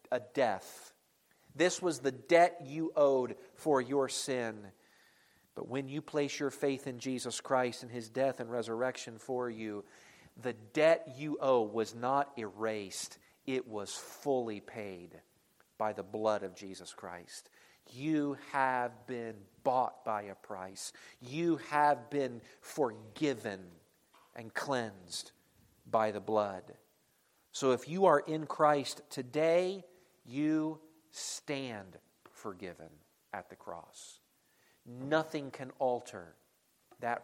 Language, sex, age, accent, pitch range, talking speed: English, male, 40-59, American, 110-155 Hz, 125 wpm